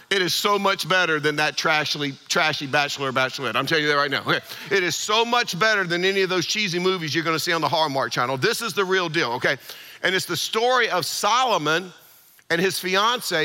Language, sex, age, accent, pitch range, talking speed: English, male, 50-69, American, 160-195 Hz, 230 wpm